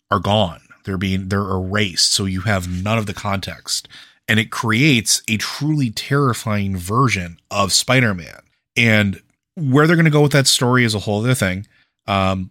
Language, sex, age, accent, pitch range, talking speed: English, male, 30-49, American, 95-115 Hz, 180 wpm